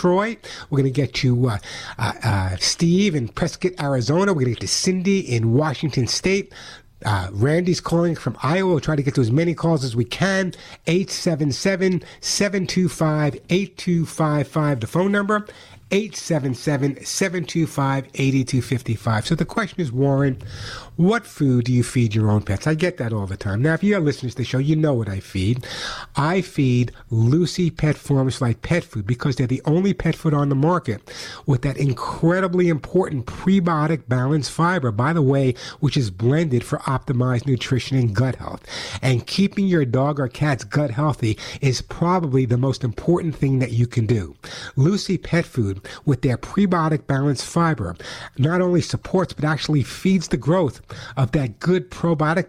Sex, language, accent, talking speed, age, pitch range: male, English, American, 165 wpm, 60-79, 125-170 Hz